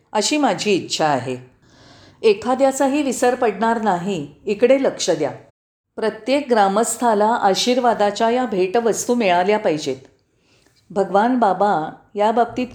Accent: native